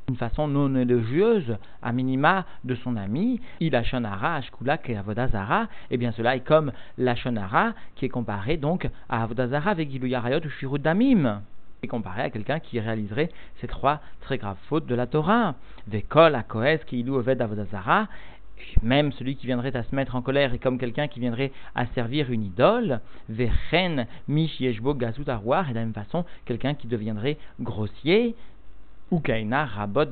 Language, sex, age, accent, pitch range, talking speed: French, male, 50-69, French, 115-150 Hz, 185 wpm